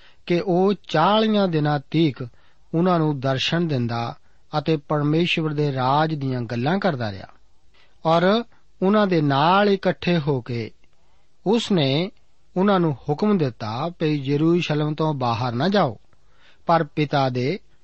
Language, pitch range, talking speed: Punjabi, 135-180 Hz, 130 wpm